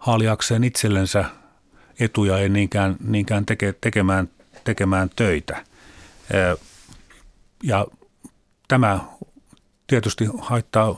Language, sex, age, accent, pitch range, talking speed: Finnish, male, 40-59, native, 95-115 Hz, 70 wpm